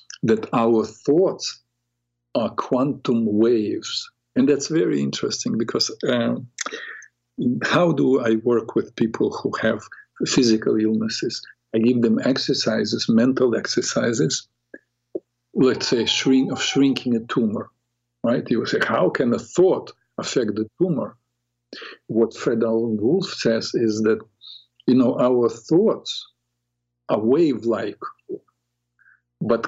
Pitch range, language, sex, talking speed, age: 110-135 Hz, English, male, 120 wpm, 50-69